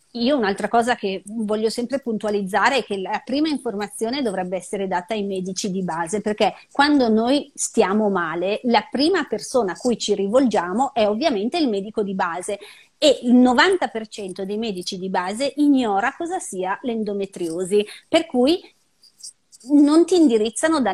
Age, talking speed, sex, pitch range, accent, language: 30-49, 155 wpm, female, 200-260 Hz, native, Italian